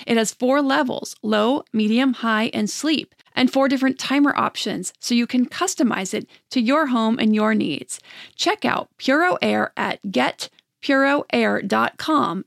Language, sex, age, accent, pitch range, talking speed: English, female, 40-59, American, 220-270 Hz, 145 wpm